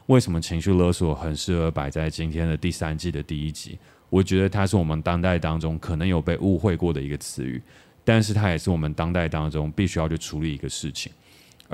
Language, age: Chinese, 20-39